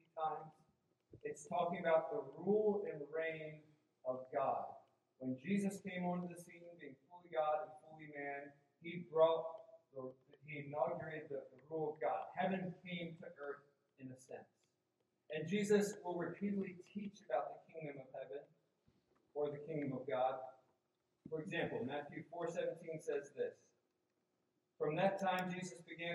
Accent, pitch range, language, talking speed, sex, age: American, 155-190 Hz, English, 145 wpm, male, 40-59